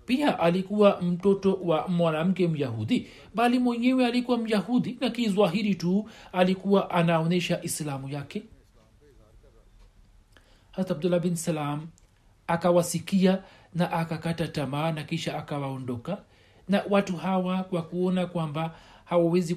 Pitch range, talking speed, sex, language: 150-190 Hz, 105 wpm, male, Swahili